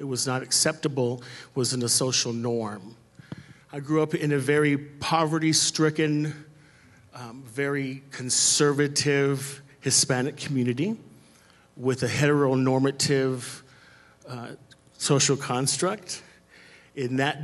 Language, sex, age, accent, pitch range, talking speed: English, male, 40-59, American, 120-140 Hz, 100 wpm